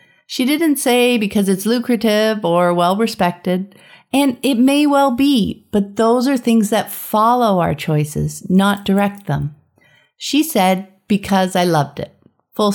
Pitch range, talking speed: 185-245 Hz, 145 wpm